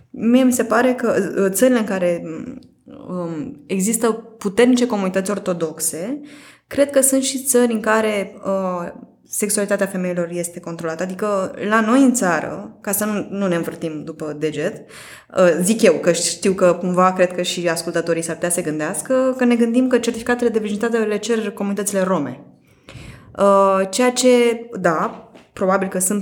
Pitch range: 180-240 Hz